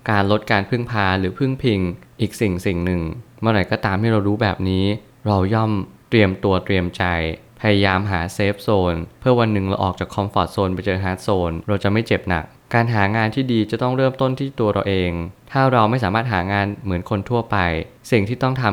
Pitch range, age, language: 95-115 Hz, 20-39, Thai